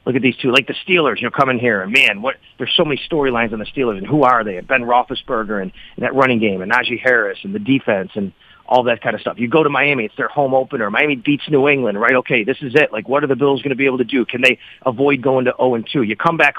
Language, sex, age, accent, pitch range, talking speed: English, male, 40-59, American, 125-155 Hz, 300 wpm